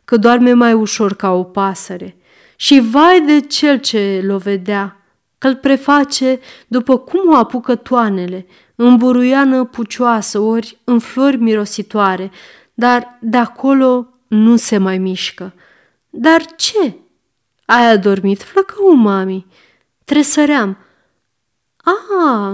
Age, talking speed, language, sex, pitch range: 30-49, 115 wpm, Romanian, female, 200-270 Hz